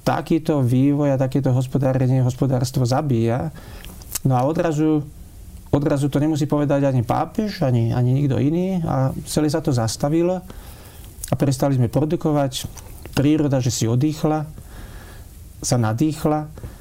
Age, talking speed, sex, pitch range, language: 40-59, 125 wpm, male, 125-145 Hz, Slovak